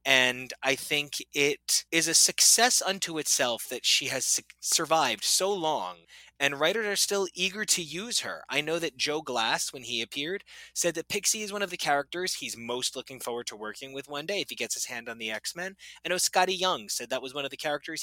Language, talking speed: English, 225 wpm